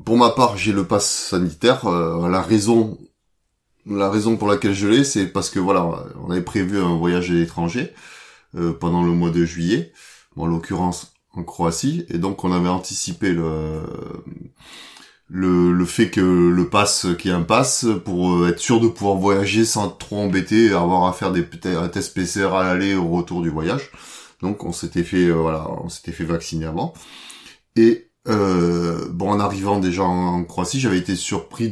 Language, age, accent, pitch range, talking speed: French, 30-49, French, 85-105 Hz, 190 wpm